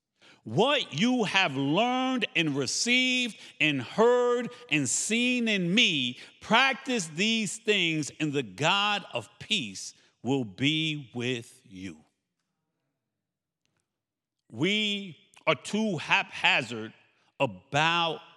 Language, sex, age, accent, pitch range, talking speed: English, male, 50-69, American, 140-215 Hz, 95 wpm